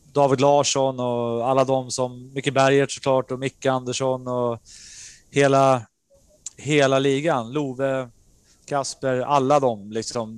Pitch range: 125-145 Hz